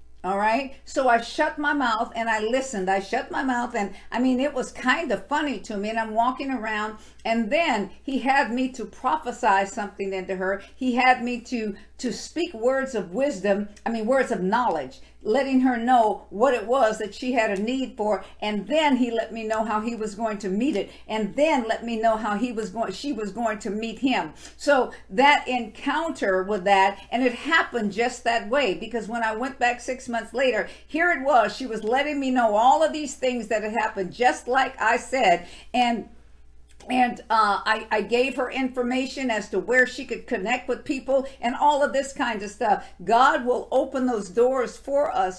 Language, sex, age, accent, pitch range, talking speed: English, female, 50-69, American, 210-260 Hz, 210 wpm